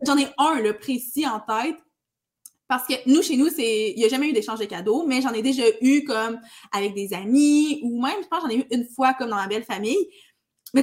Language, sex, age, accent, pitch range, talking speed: French, female, 20-39, Canadian, 225-295 Hz, 250 wpm